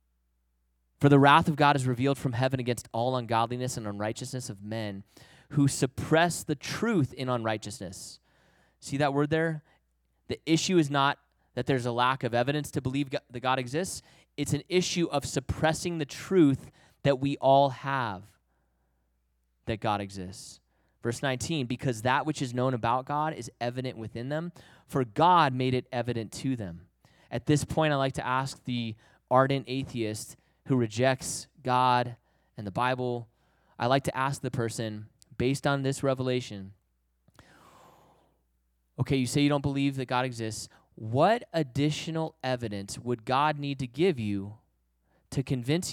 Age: 20-39